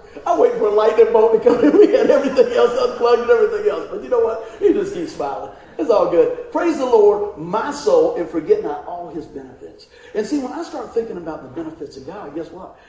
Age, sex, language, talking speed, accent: 40-59, male, English, 240 wpm, American